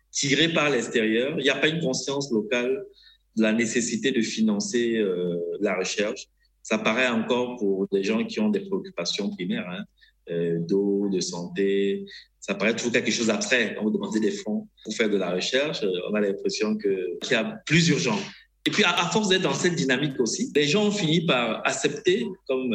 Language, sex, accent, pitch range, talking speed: French, male, French, 110-175 Hz, 205 wpm